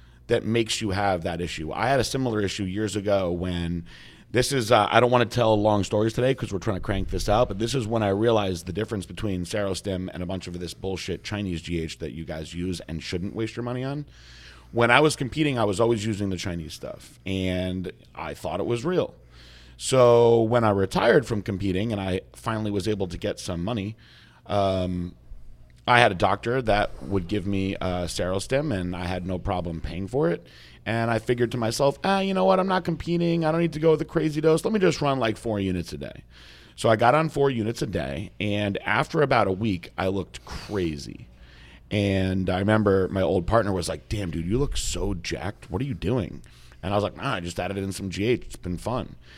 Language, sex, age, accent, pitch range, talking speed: English, male, 30-49, American, 90-115 Hz, 230 wpm